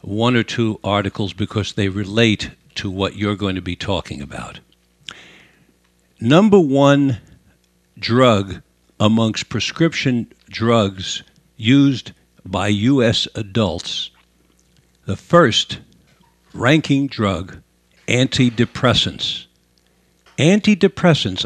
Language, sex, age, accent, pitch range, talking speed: English, male, 60-79, American, 100-135 Hz, 85 wpm